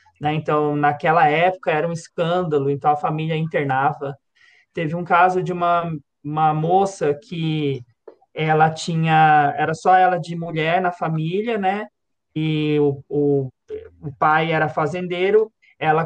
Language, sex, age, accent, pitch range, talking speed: Portuguese, male, 20-39, Brazilian, 150-185 Hz, 125 wpm